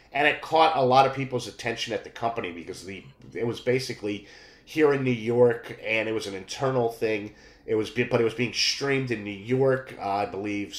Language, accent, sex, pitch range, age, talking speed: English, American, male, 110-140 Hz, 30-49, 215 wpm